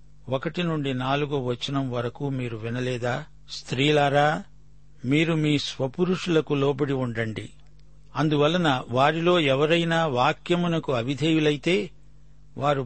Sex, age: male, 50-69